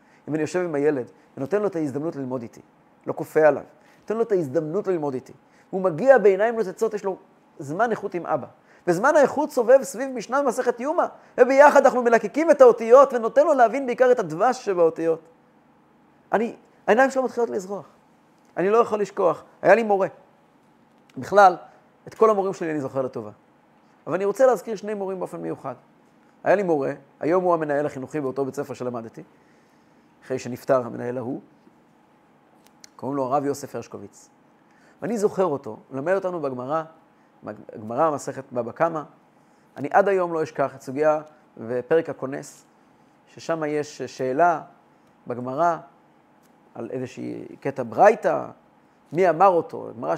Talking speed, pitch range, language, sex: 140 wpm, 140-230 Hz, Hebrew, male